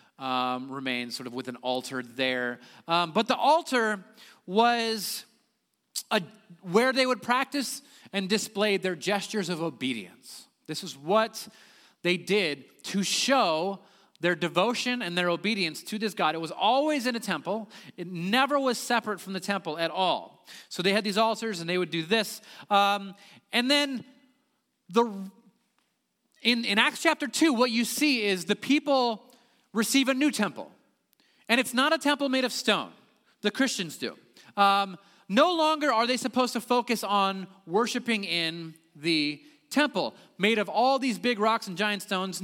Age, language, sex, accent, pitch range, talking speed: 30-49, English, male, American, 175-245 Hz, 165 wpm